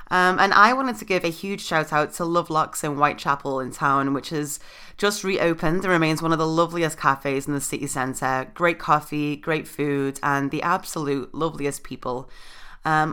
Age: 20-39